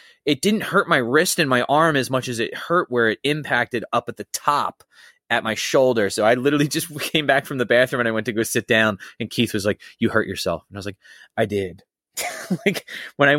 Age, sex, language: 20-39, male, English